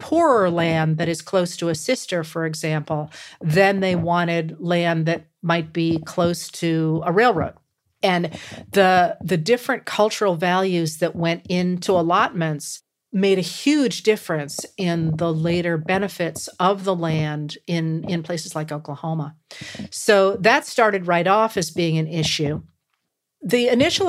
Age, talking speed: 40-59, 145 wpm